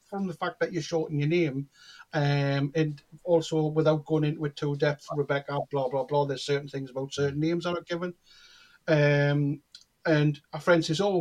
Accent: British